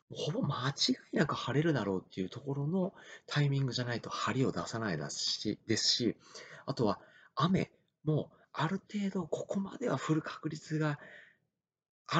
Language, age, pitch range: Japanese, 40-59, 115-170 Hz